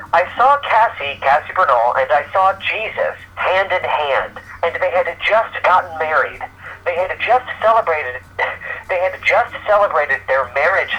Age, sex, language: 40-59, male, English